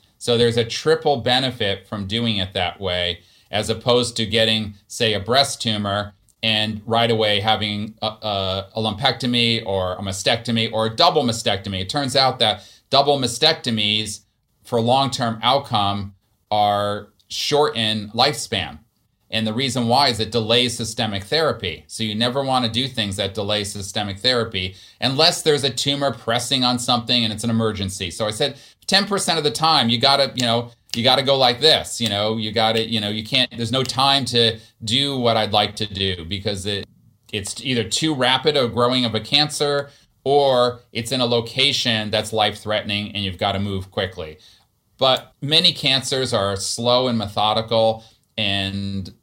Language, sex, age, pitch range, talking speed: English, male, 30-49, 105-125 Hz, 180 wpm